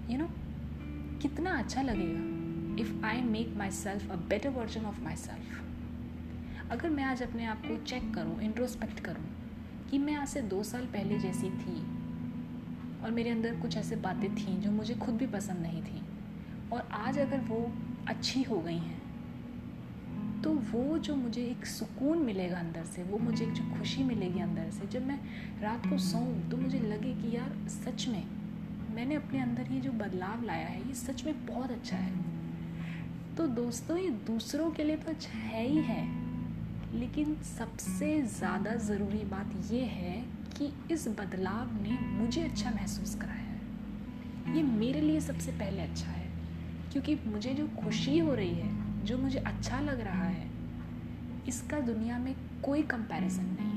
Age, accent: 30-49, native